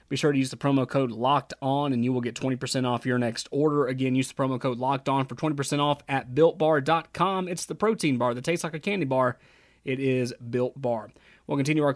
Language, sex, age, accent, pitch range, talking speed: English, male, 30-49, American, 125-155 Hz, 245 wpm